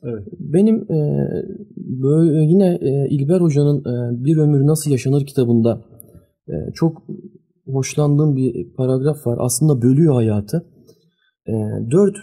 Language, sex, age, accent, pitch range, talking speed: Turkish, male, 30-49, native, 115-150 Hz, 120 wpm